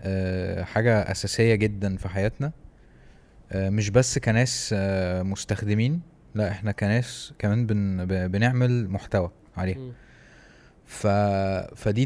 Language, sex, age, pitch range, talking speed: Arabic, male, 20-39, 100-120 Hz, 110 wpm